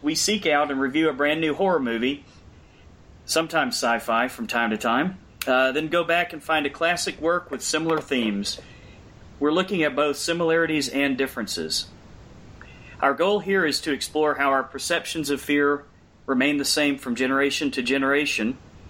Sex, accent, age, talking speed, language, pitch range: male, American, 40-59, 165 wpm, English, 125-160 Hz